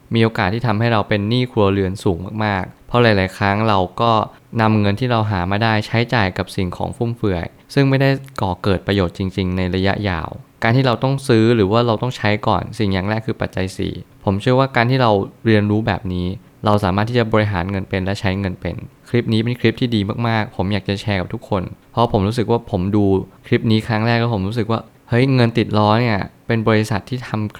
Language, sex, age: Thai, male, 20-39